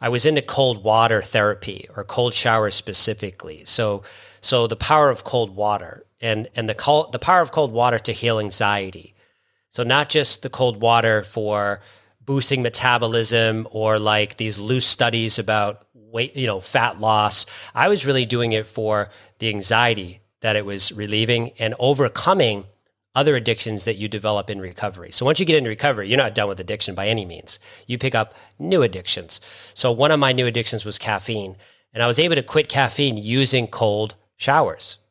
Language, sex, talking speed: English, male, 185 wpm